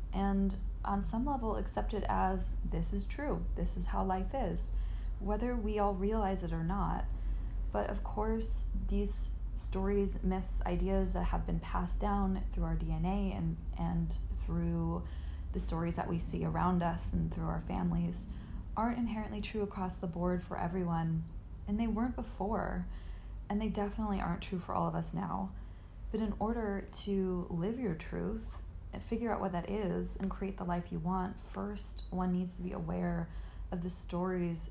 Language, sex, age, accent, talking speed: English, female, 20-39, American, 175 wpm